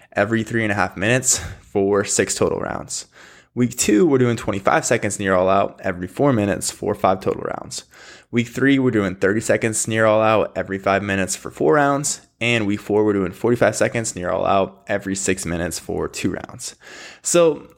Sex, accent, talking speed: male, American, 195 wpm